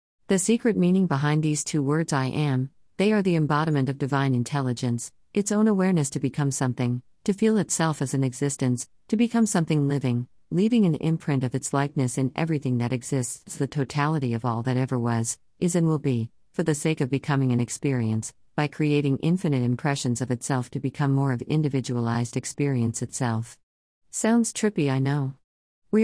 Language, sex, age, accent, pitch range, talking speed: English, female, 50-69, American, 125-160 Hz, 180 wpm